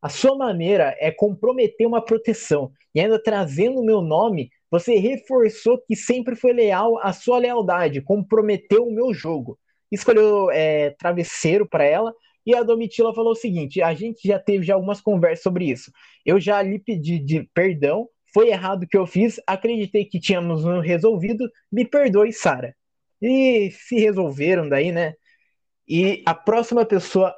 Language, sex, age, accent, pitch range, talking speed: Portuguese, male, 20-39, Brazilian, 175-230 Hz, 160 wpm